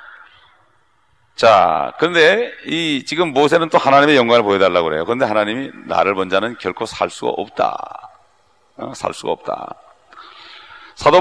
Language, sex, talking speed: English, male, 130 wpm